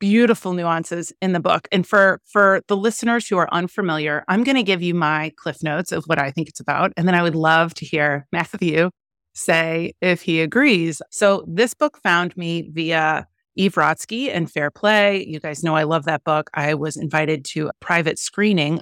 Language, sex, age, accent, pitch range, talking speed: English, female, 30-49, American, 160-195 Hz, 205 wpm